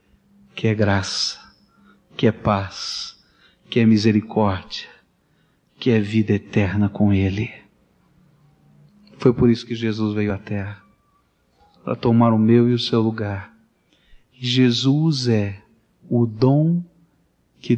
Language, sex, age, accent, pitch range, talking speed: English, male, 40-59, Brazilian, 100-125 Hz, 125 wpm